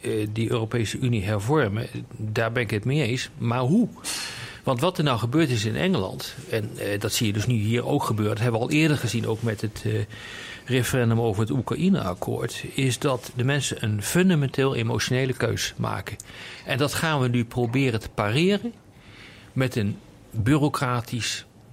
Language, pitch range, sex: Dutch, 110-140 Hz, male